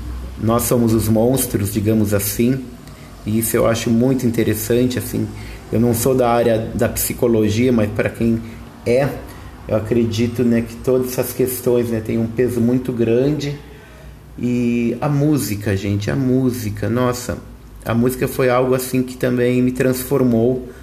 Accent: Brazilian